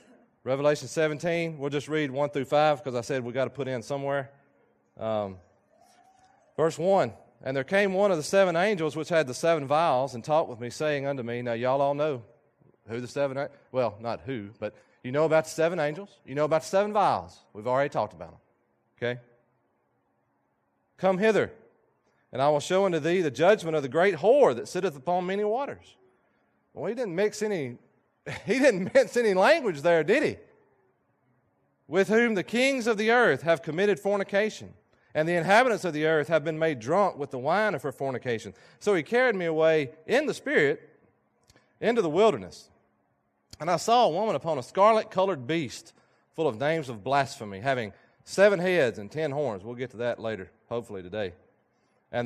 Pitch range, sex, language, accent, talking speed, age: 120-185 Hz, male, English, American, 195 wpm, 30-49